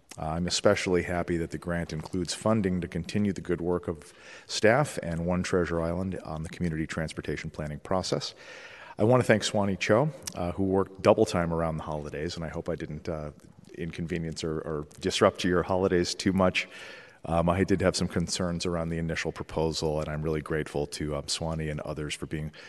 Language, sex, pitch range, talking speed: English, male, 80-95 Hz, 195 wpm